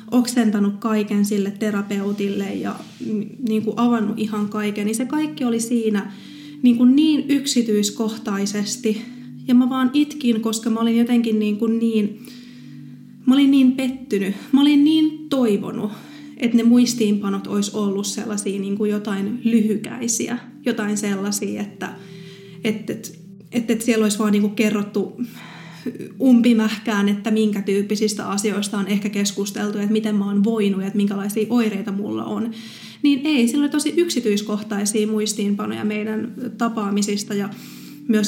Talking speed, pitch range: 135 wpm, 205-240 Hz